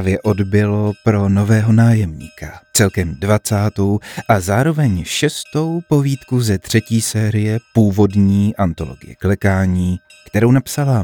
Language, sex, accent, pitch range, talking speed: Czech, male, native, 100-145 Hz, 105 wpm